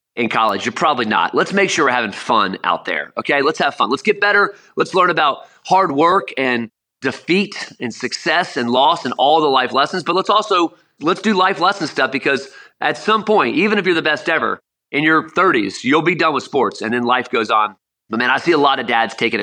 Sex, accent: male, American